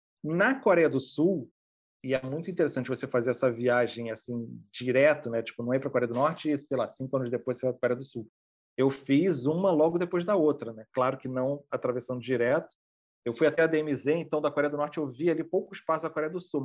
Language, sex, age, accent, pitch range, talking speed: Portuguese, male, 30-49, Brazilian, 120-145 Hz, 245 wpm